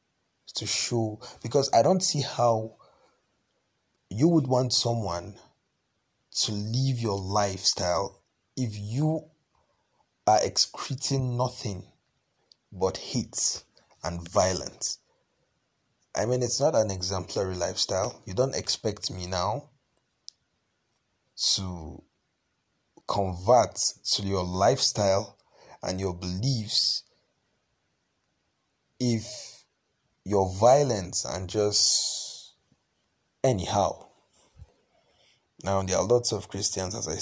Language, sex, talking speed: English, male, 95 wpm